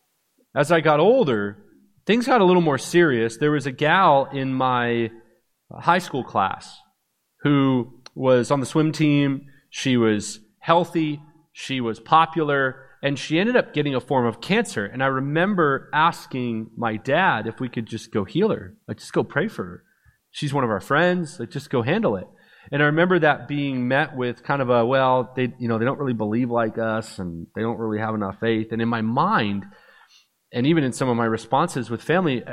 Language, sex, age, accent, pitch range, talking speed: English, male, 30-49, American, 120-165 Hz, 200 wpm